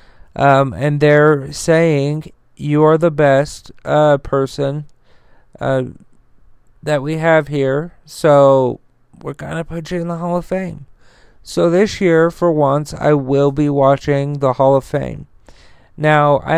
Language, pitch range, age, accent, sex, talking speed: English, 135-155 Hz, 40-59, American, male, 145 wpm